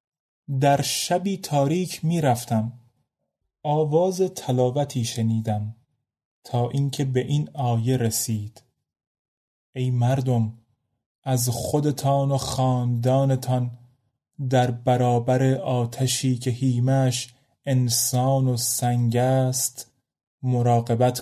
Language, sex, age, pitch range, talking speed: Persian, male, 30-49, 125-155 Hz, 85 wpm